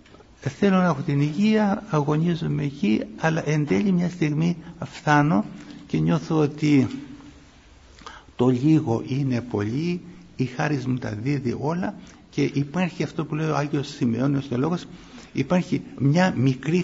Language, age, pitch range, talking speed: Greek, 60-79, 125-160 Hz, 140 wpm